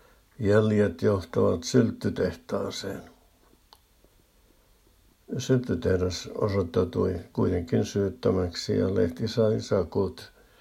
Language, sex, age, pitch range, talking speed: Finnish, male, 60-79, 95-115 Hz, 60 wpm